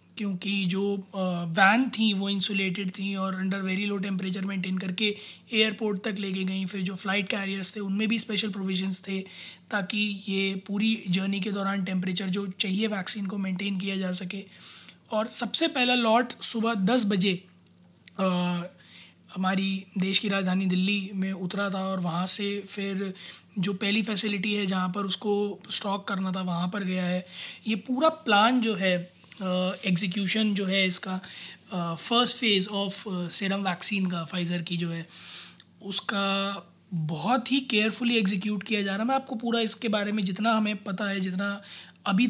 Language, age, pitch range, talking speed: Hindi, 20-39, 190-215 Hz, 165 wpm